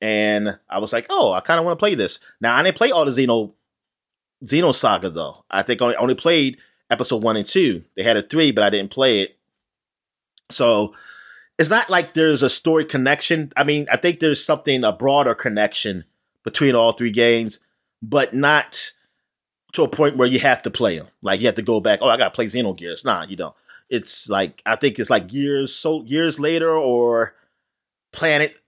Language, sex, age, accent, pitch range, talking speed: English, male, 30-49, American, 115-155 Hz, 210 wpm